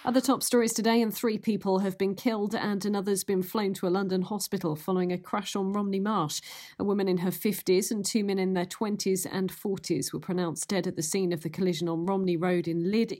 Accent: British